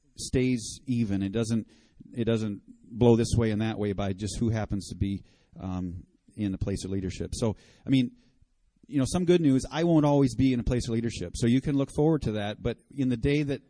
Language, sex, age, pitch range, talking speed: English, male, 40-59, 110-130 Hz, 230 wpm